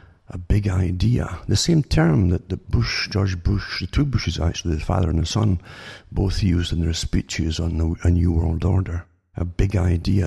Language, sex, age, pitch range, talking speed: English, male, 60-79, 85-110 Hz, 185 wpm